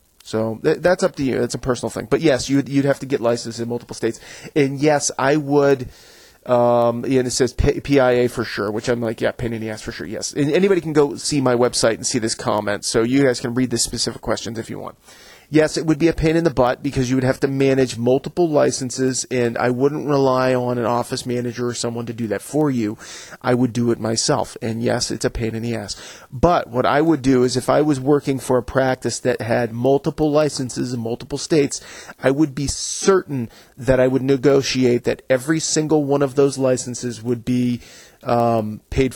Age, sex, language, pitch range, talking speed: 30-49, male, English, 120-140 Hz, 225 wpm